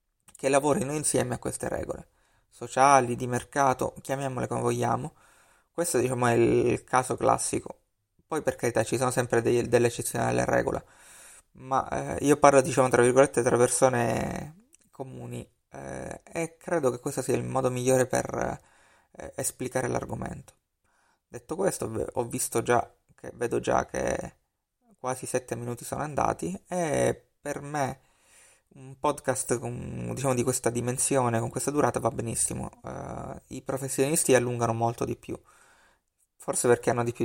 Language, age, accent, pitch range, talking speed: Italian, 20-39, native, 120-135 Hz, 150 wpm